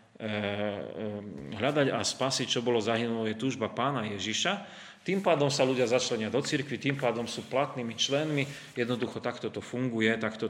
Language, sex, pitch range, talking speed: Slovak, male, 105-130 Hz, 155 wpm